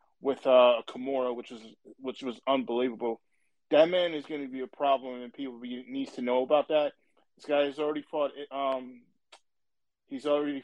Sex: male